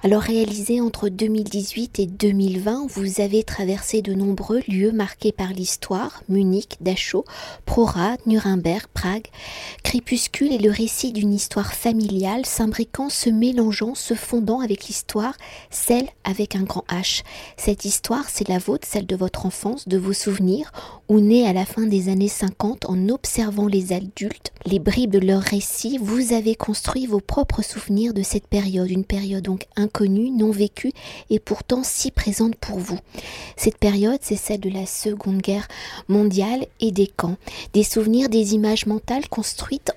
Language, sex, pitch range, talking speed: French, female, 195-230 Hz, 160 wpm